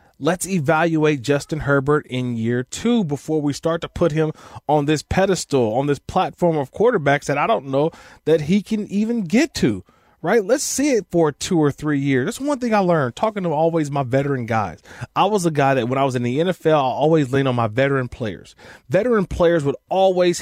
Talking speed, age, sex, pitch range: 215 wpm, 30-49, male, 135-185 Hz